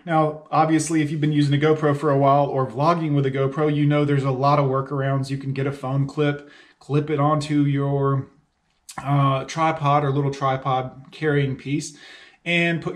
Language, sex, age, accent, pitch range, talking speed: English, male, 30-49, American, 135-155 Hz, 195 wpm